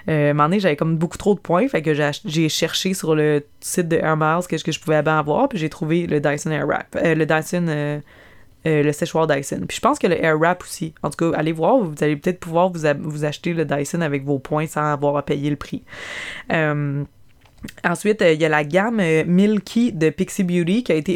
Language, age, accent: French, 20-39, Canadian